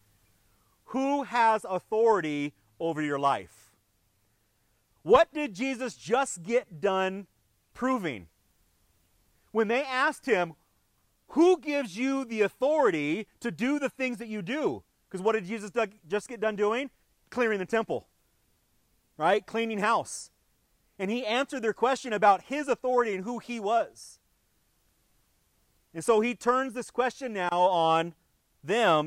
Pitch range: 140-225 Hz